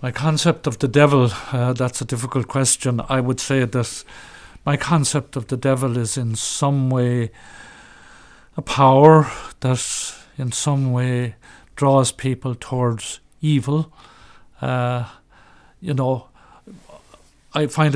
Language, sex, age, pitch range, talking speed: English, male, 50-69, 120-140 Hz, 125 wpm